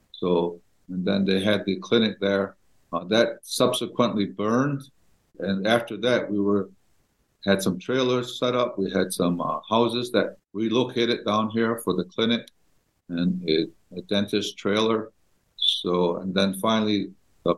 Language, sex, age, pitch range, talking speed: English, male, 50-69, 95-110 Hz, 150 wpm